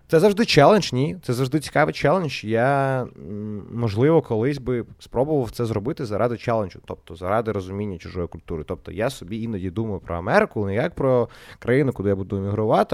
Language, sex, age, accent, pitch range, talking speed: Ukrainian, male, 20-39, native, 95-120 Hz, 170 wpm